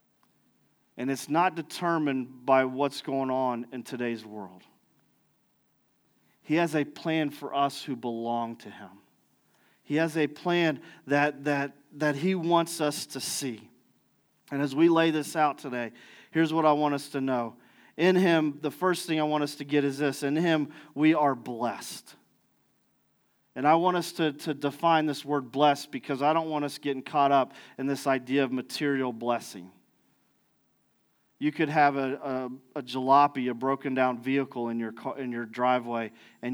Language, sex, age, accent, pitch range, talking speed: English, male, 40-59, American, 130-160 Hz, 170 wpm